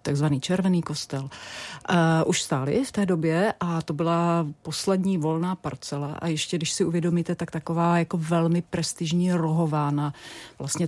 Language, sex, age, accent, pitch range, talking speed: Czech, female, 40-59, native, 155-175 Hz, 150 wpm